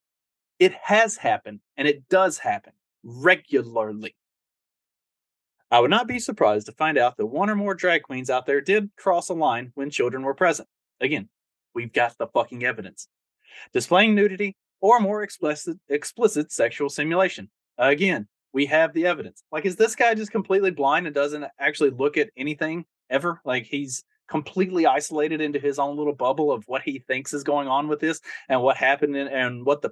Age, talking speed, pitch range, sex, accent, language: 30-49, 180 wpm, 135-185 Hz, male, American, English